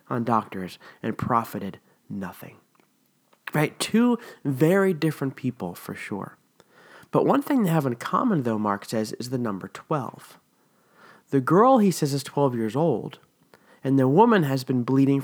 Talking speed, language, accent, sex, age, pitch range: 160 wpm, English, American, male, 30-49, 125-175 Hz